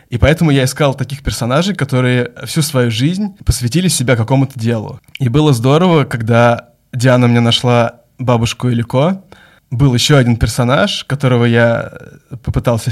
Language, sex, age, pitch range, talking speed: Russian, male, 20-39, 120-140 Hz, 140 wpm